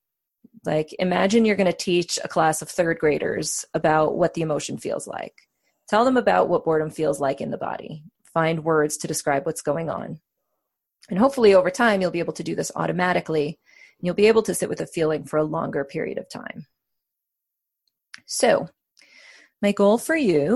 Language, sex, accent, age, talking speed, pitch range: English, female, American, 30-49, 185 wpm, 170-225 Hz